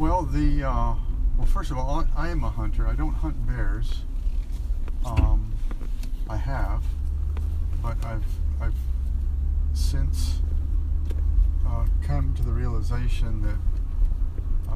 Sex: male